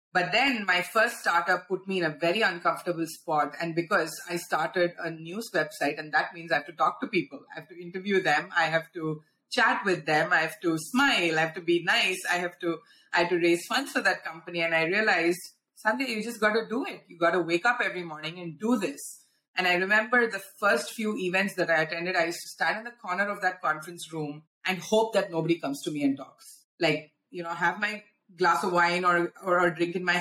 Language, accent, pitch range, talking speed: English, Indian, 170-215 Hz, 245 wpm